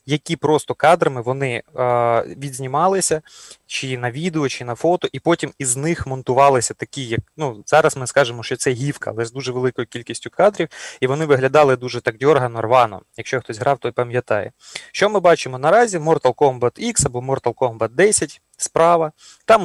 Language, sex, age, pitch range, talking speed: Ukrainian, male, 20-39, 125-150 Hz, 175 wpm